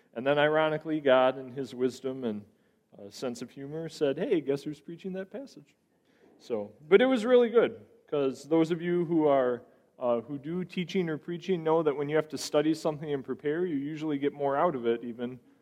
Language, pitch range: English, 130-175 Hz